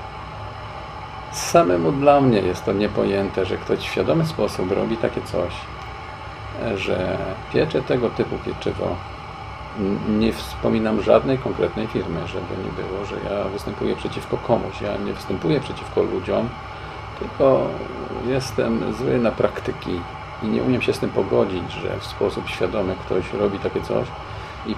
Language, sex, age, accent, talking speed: Polish, male, 50-69, native, 140 wpm